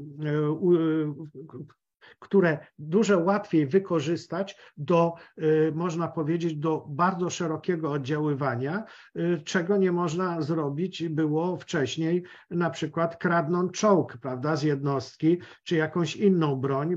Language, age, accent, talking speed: Polish, 50-69, native, 100 wpm